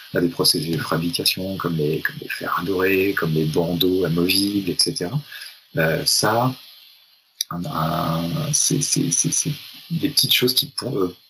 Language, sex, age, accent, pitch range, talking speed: French, male, 30-49, French, 85-125 Hz, 155 wpm